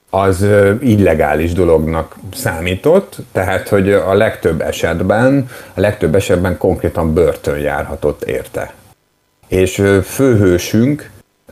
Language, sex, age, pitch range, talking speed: Hungarian, male, 50-69, 85-110 Hz, 95 wpm